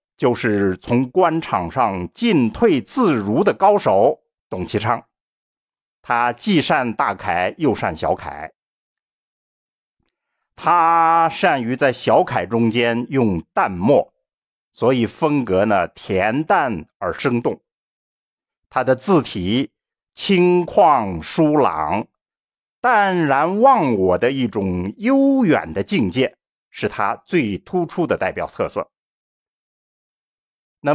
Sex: male